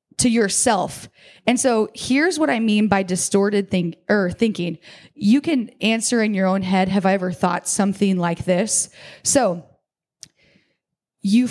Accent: American